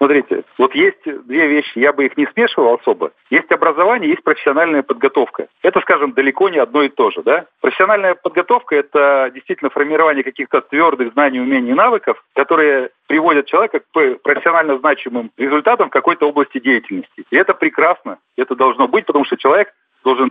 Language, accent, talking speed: Russian, native, 170 wpm